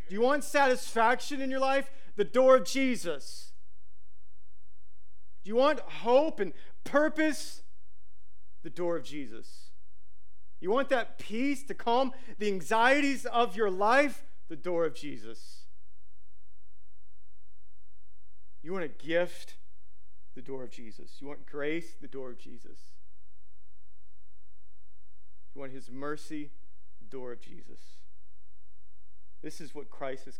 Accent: American